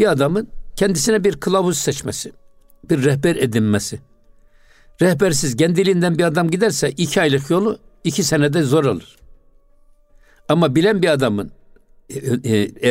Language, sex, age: Turkish, male, 60-79